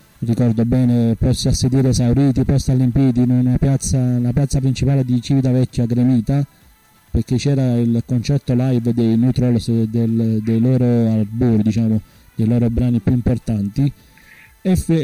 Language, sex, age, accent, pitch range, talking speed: Italian, male, 30-49, native, 125-155 Hz, 135 wpm